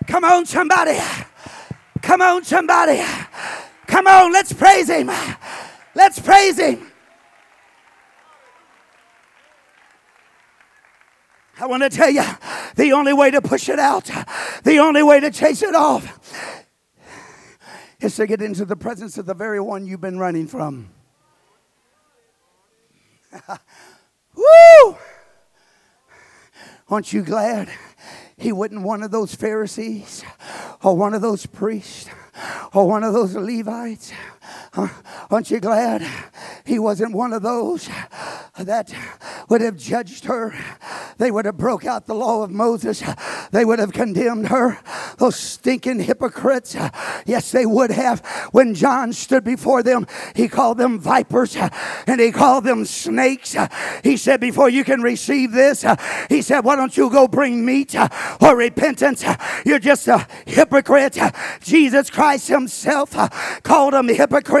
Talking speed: 130 wpm